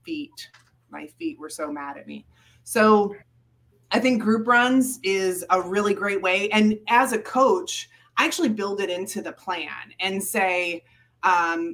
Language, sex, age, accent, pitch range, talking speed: English, female, 30-49, American, 170-215 Hz, 165 wpm